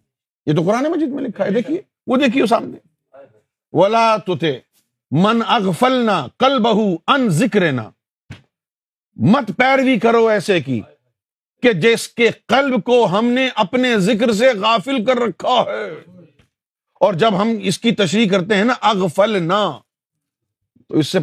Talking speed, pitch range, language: 155 wpm, 175-240 Hz, Urdu